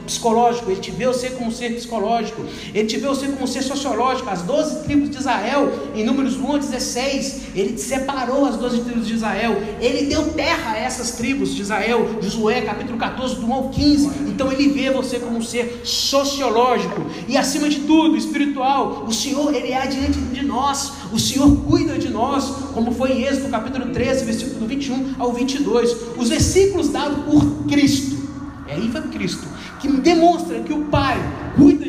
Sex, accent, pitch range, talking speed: male, Brazilian, 240-280 Hz, 190 wpm